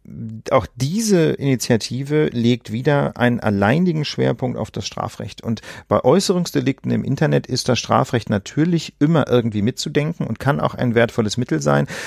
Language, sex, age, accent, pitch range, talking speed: German, male, 40-59, German, 115-150 Hz, 150 wpm